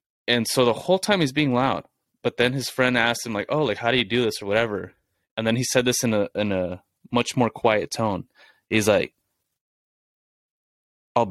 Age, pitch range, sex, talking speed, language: 20-39, 100-125 Hz, male, 210 wpm, English